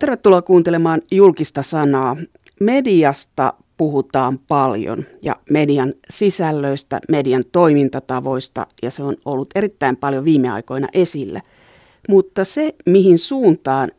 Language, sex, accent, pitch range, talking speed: Finnish, female, native, 145-190 Hz, 105 wpm